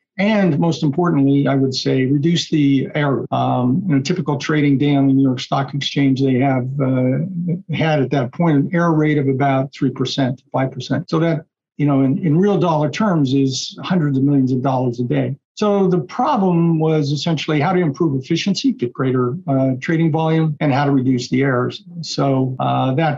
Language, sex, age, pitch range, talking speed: English, male, 50-69, 135-165 Hz, 195 wpm